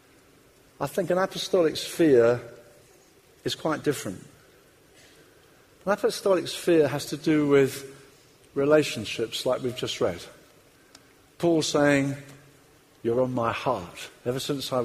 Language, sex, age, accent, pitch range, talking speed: English, male, 50-69, British, 130-165 Hz, 115 wpm